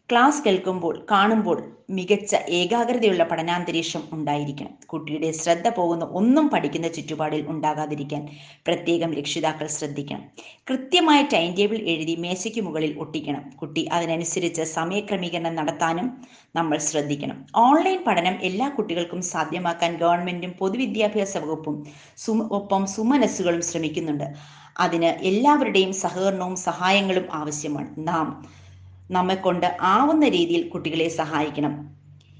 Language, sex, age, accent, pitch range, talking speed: Malayalam, female, 30-49, native, 155-180 Hz, 100 wpm